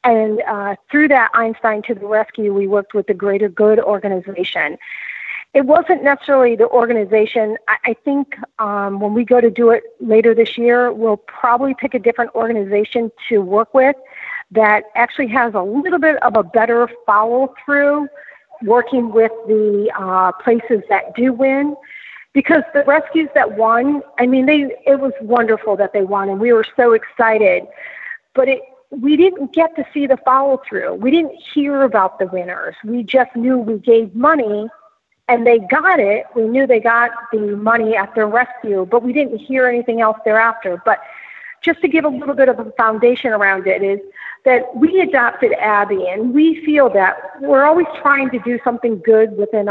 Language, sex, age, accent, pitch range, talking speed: English, female, 50-69, American, 215-270 Hz, 180 wpm